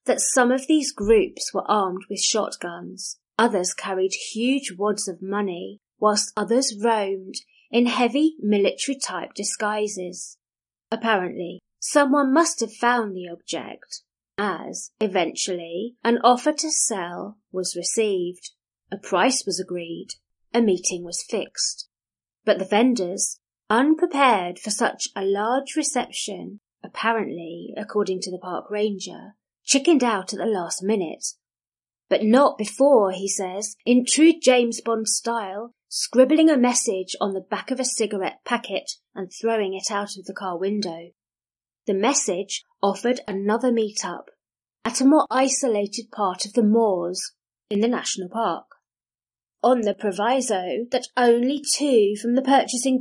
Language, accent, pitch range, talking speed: English, British, 195-250 Hz, 135 wpm